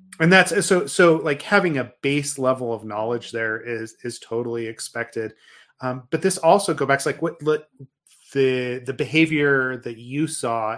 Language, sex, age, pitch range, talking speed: English, male, 30-49, 120-145 Hz, 180 wpm